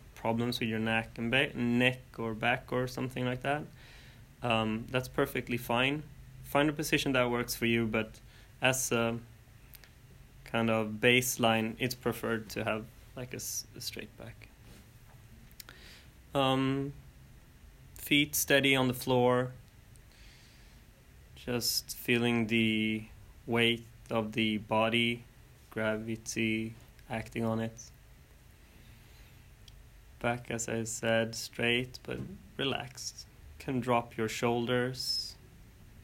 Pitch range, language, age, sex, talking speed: 110-125 Hz, English, 20-39, male, 115 wpm